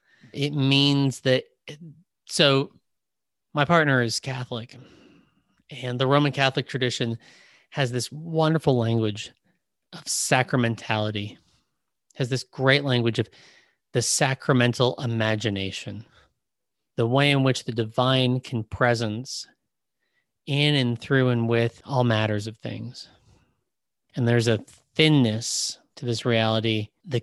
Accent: American